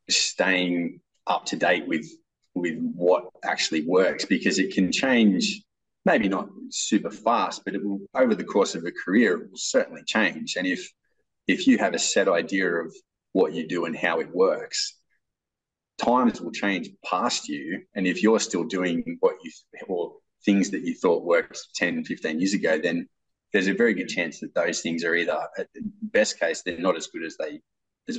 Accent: Australian